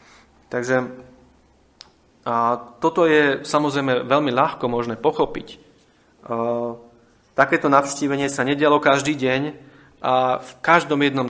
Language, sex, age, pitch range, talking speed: Slovak, male, 30-49, 125-150 Hz, 105 wpm